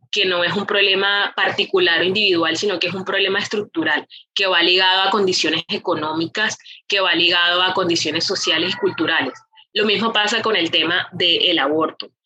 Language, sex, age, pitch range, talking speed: Spanish, female, 20-39, 180-215 Hz, 180 wpm